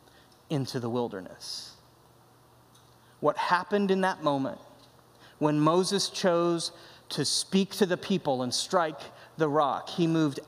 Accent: American